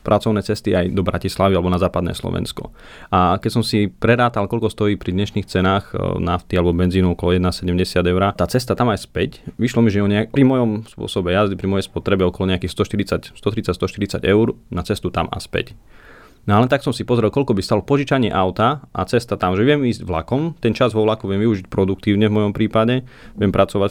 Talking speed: 200 wpm